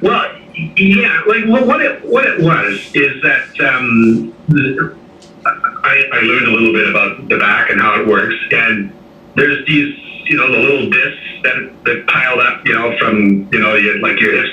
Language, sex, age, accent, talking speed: English, male, 60-79, American, 190 wpm